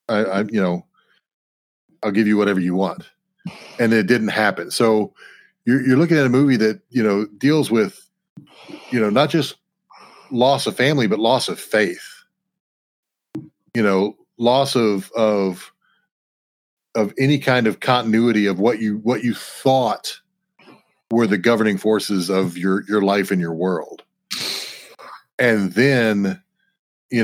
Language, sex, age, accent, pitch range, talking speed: English, male, 40-59, American, 100-125 Hz, 150 wpm